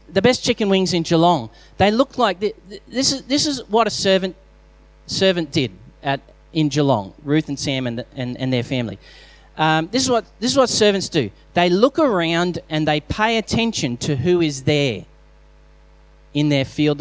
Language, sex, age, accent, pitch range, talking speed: English, male, 30-49, Australian, 130-180 Hz, 185 wpm